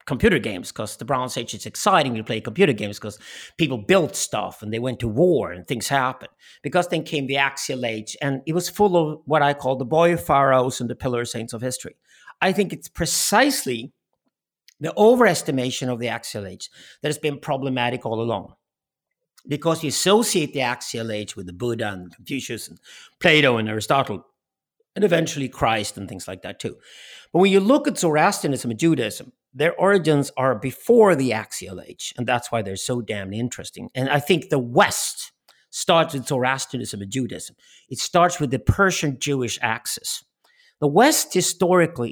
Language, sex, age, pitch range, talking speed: English, male, 50-69, 115-160 Hz, 185 wpm